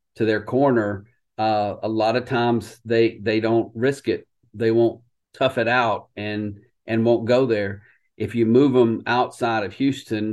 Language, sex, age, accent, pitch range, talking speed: English, male, 50-69, American, 105-115 Hz, 175 wpm